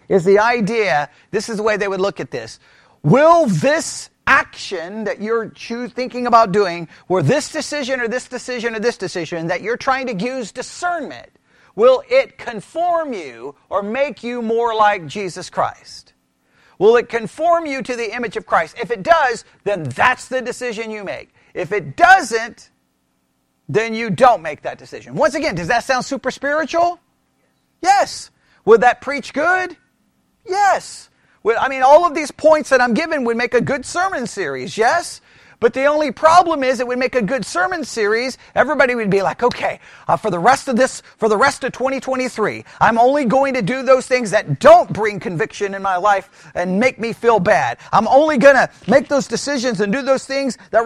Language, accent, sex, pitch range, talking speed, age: English, American, male, 215-280 Hz, 190 wpm, 40-59